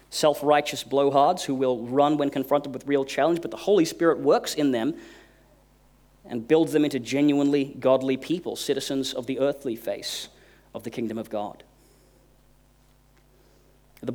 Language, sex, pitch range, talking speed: English, male, 130-150 Hz, 150 wpm